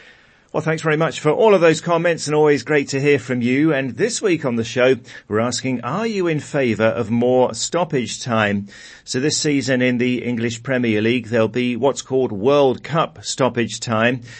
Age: 40-59